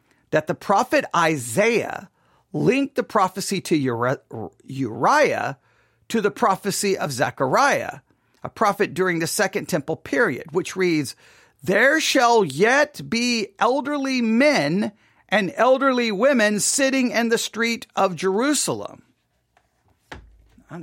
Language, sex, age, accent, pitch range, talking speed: English, male, 50-69, American, 145-220 Hz, 110 wpm